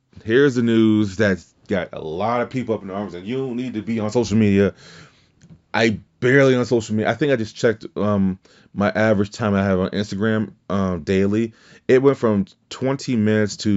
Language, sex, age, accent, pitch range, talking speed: English, male, 30-49, American, 95-125 Hz, 205 wpm